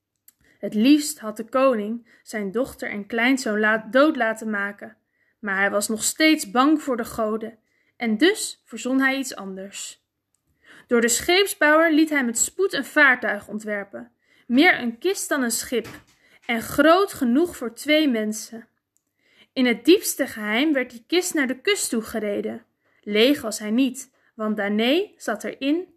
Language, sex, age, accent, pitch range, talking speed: Dutch, female, 20-39, Dutch, 230-315 Hz, 160 wpm